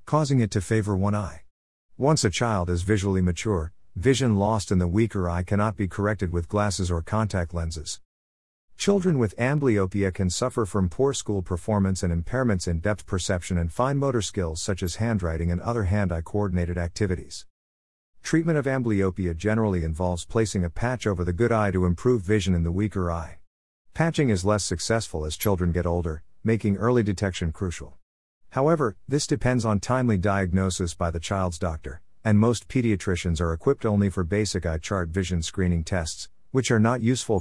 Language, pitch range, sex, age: English, 85-110 Hz, male, 50-69